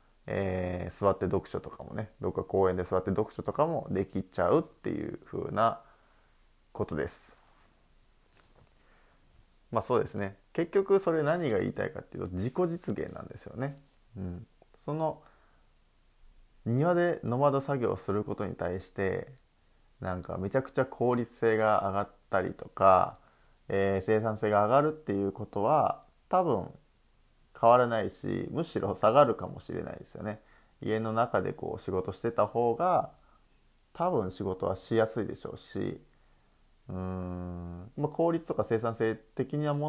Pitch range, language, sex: 95-140 Hz, Japanese, male